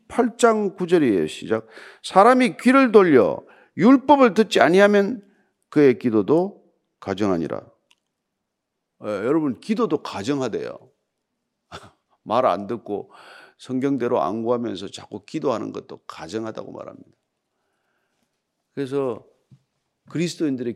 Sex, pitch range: male, 125-210 Hz